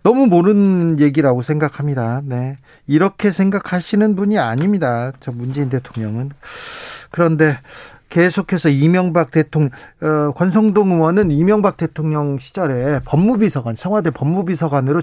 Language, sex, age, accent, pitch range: Korean, male, 40-59, native, 130-175 Hz